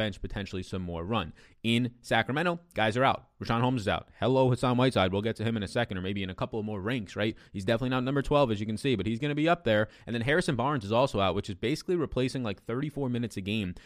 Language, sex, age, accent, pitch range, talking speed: English, male, 20-39, American, 100-130 Hz, 280 wpm